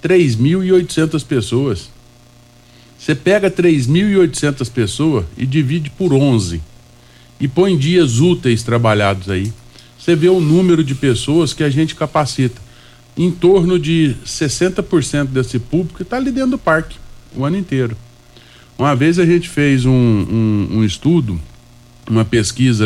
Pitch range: 120-165 Hz